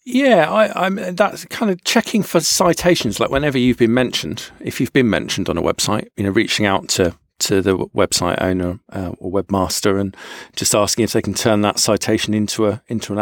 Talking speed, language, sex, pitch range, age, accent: 210 wpm, English, male, 100-130 Hz, 40-59, British